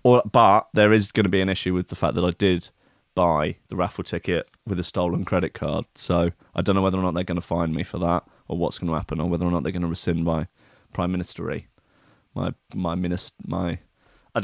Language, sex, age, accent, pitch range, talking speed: English, male, 30-49, British, 90-130 Hz, 250 wpm